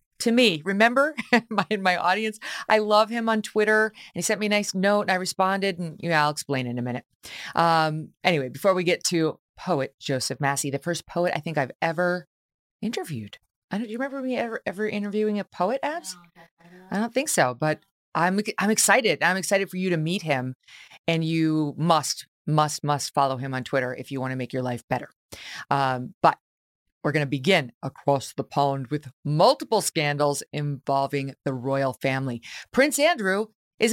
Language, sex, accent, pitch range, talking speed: English, female, American, 145-215 Hz, 195 wpm